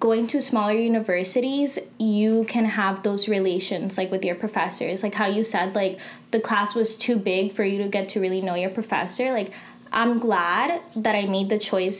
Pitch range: 195-230 Hz